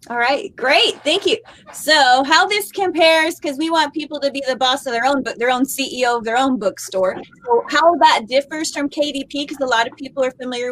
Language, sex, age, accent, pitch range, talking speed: English, female, 30-49, American, 235-305 Hz, 225 wpm